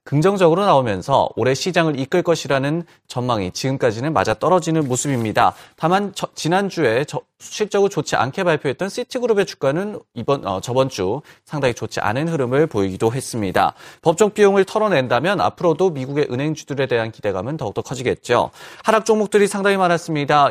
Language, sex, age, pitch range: Korean, male, 30-49, 135-185 Hz